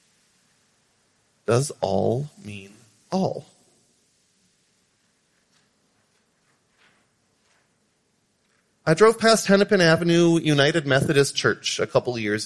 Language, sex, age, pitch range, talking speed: English, male, 40-59, 135-175 Hz, 75 wpm